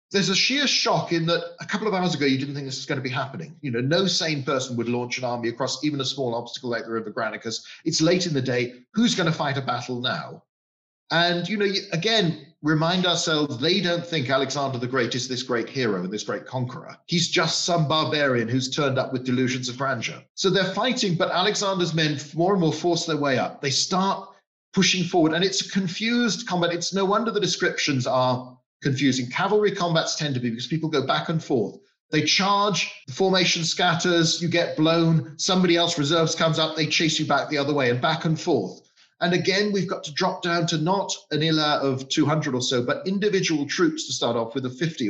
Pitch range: 135-180 Hz